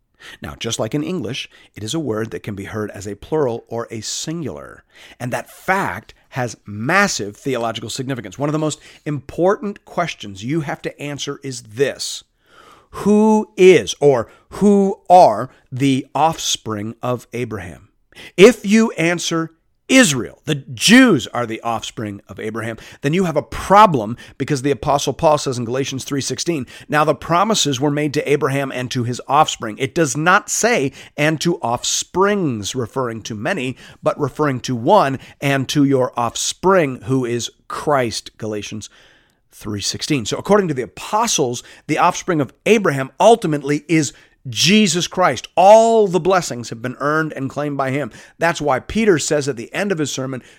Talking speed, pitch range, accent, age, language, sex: 165 wpm, 120-155 Hz, American, 40-59, English, male